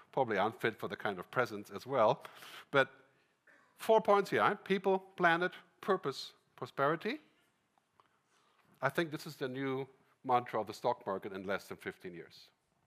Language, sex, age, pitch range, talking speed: English, male, 50-69, 125-175 Hz, 155 wpm